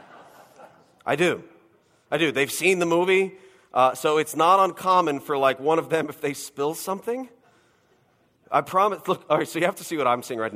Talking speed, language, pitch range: 205 wpm, English, 145-210 Hz